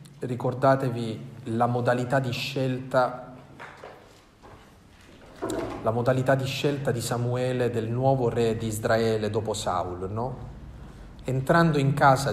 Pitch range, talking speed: 115-145 Hz, 105 wpm